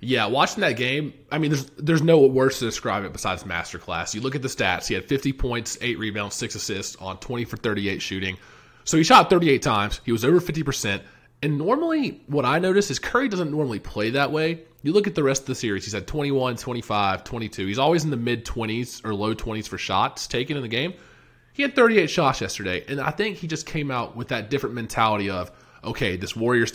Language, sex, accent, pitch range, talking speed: English, male, American, 105-145 Hz, 225 wpm